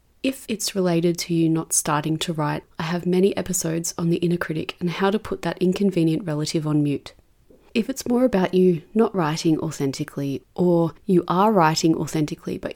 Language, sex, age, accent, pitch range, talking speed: English, female, 30-49, Australian, 160-195 Hz, 190 wpm